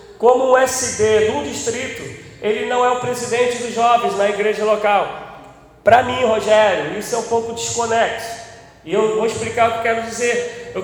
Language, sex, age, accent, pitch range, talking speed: Portuguese, male, 40-59, Brazilian, 230-290 Hz, 190 wpm